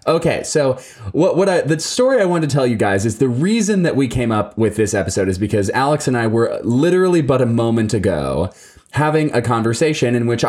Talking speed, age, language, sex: 225 wpm, 20-39, English, male